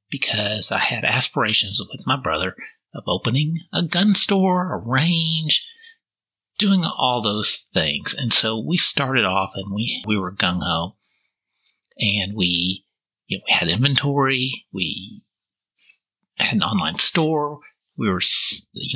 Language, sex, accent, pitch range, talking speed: English, male, American, 115-185 Hz, 140 wpm